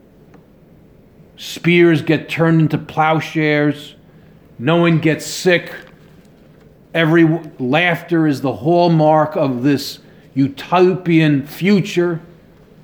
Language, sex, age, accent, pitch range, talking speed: English, male, 50-69, American, 140-165 Hz, 85 wpm